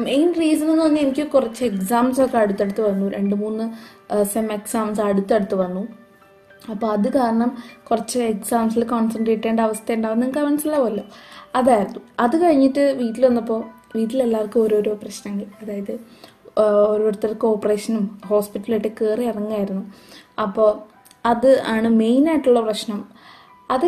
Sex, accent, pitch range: female, native, 215-245 Hz